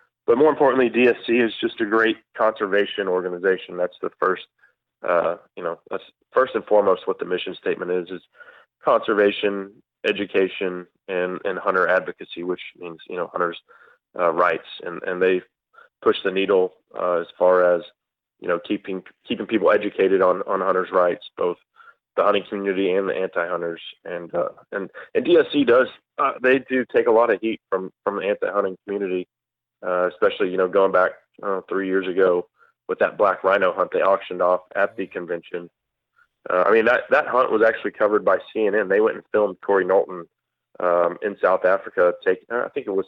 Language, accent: English, American